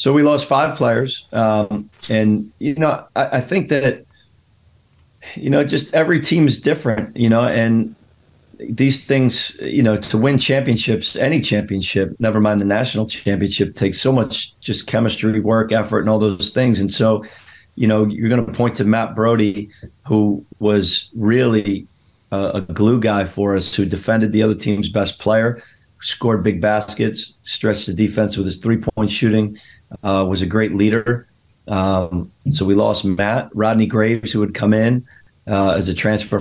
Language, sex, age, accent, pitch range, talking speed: English, male, 40-59, American, 100-115 Hz, 175 wpm